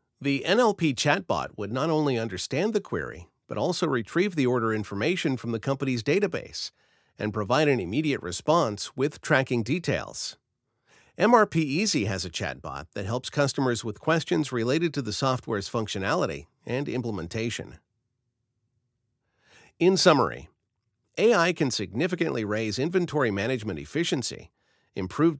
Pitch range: 110-155 Hz